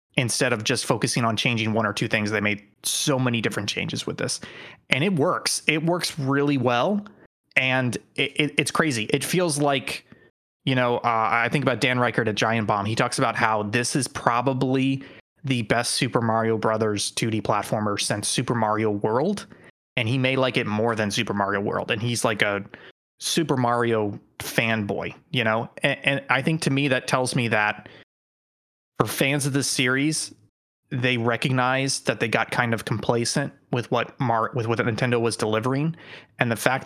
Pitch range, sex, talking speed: 115-145 Hz, male, 185 wpm